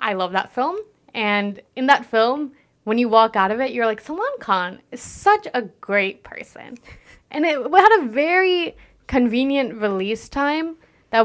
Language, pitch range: English, 190-250 Hz